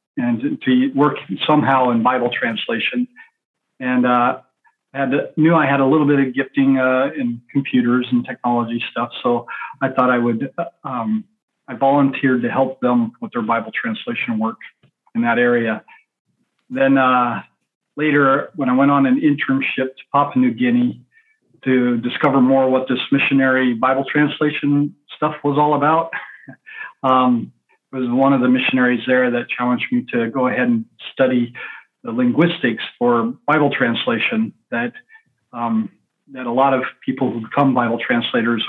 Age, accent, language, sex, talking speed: 40-59, American, English, male, 155 wpm